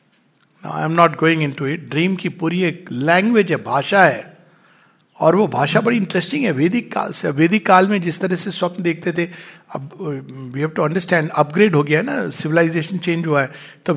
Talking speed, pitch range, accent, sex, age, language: 140 wpm, 160-205 Hz, Indian, male, 50-69, English